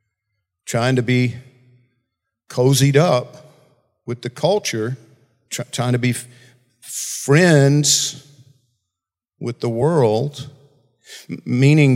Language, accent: English, American